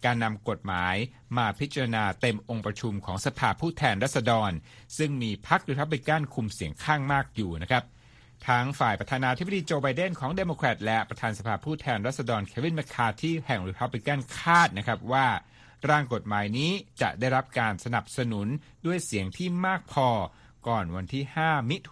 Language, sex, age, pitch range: Thai, male, 60-79, 110-140 Hz